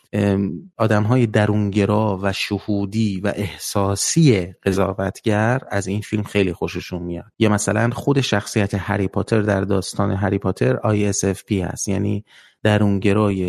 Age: 30-49